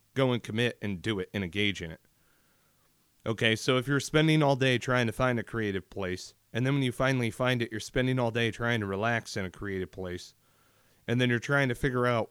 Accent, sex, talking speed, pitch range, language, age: American, male, 235 wpm, 105-125 Hz, English, 30-49